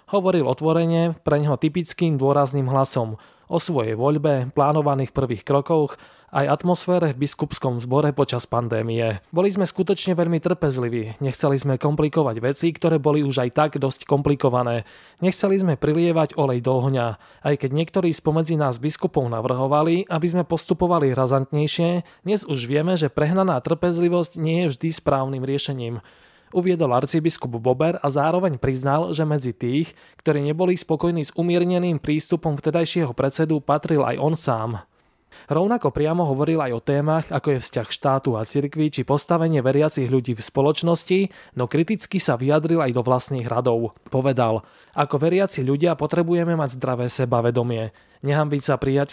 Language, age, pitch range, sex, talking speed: Slovak, 20-39, 130-165 Hz, male, 150 wpm